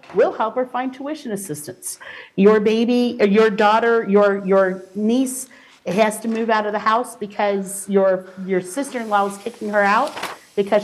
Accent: American